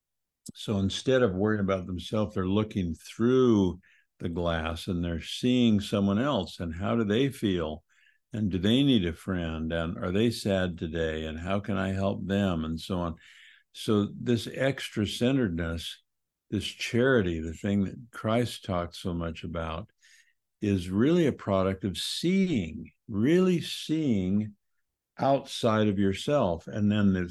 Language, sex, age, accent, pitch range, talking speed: English, male, 60-79, American, 85-110 Hz, 150 wpm